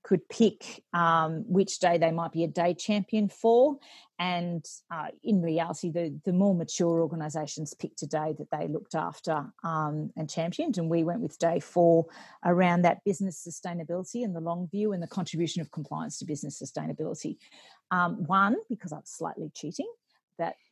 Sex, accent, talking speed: female, Australian, 175 wpm